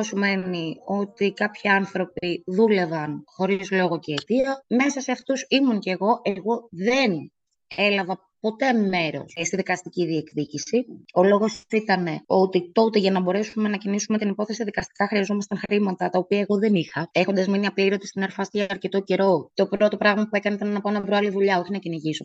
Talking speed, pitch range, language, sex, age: 180 wpm, 190-245 Hz, Greek, female, 20-39